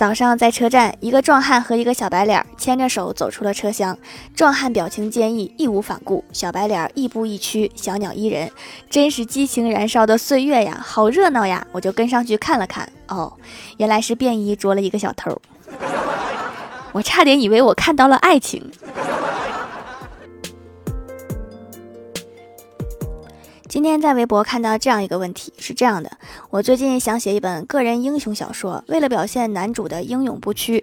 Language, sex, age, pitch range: Chinese, female, 20-39, 200-255 Hz